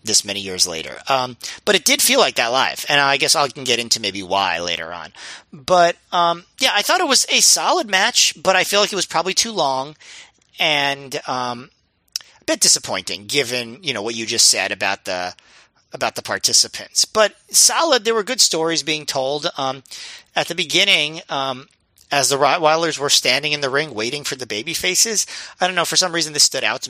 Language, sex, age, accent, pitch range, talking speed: English, male, 40-59, American, 125-175 Hz, 210 wpm